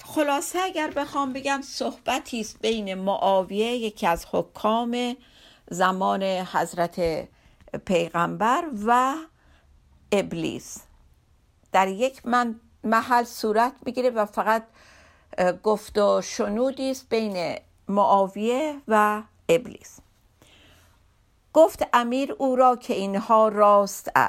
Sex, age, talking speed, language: female, 50-69, 95 wpm, Persian